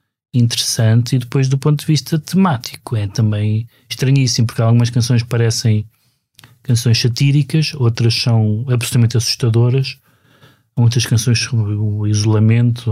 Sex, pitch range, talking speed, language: male, 115-130 Hz, 120 wpm, Portuguese